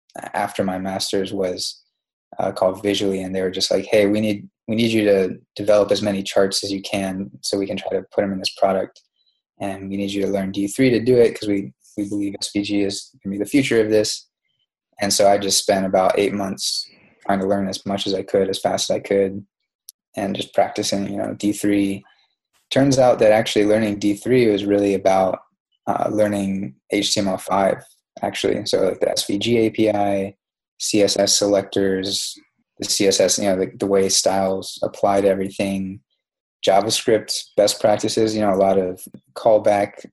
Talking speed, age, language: 190 wpm, 20-39, English